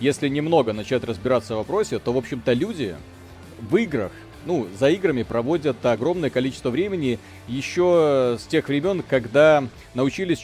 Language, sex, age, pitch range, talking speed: Russian, male, 40-59, 120-150 Hz, 145 wpm